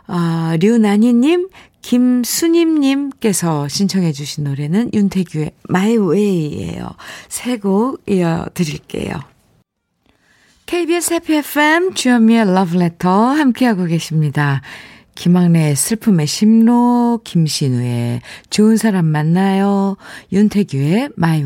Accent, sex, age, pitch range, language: native, female, 50-69, 175-250 Hz, Korean